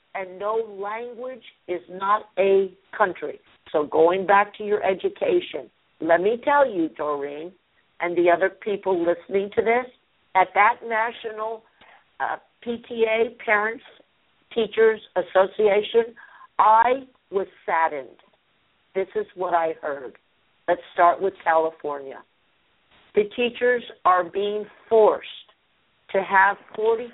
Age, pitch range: 50-69, 180-230 Hz